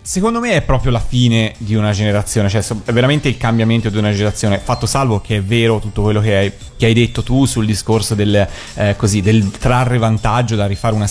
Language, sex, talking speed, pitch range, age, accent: Italian, male, 220 wpm, 105-125 Hz, 30-49, native